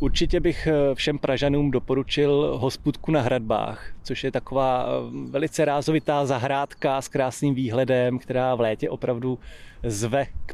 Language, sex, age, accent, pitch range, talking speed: Czech, male, 20-39, native, 115-135 Hz, 130 wpm